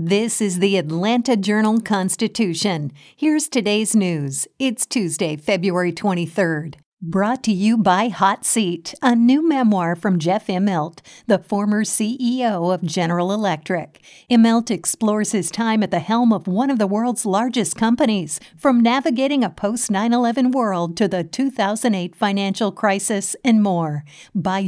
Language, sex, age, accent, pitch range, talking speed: English, female, 50-69, American, 180-225 Hz, 140 wpm